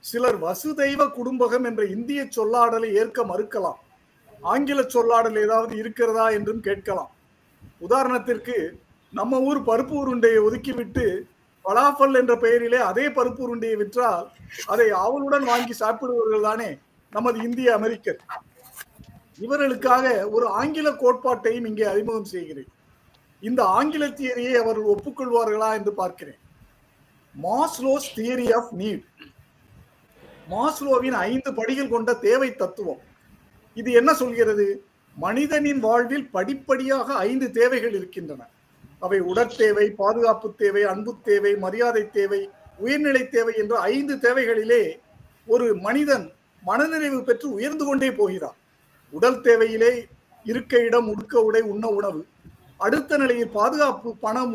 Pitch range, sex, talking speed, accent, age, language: 220-265 Hz, male, 110 wpm, native, 50-69, Tamil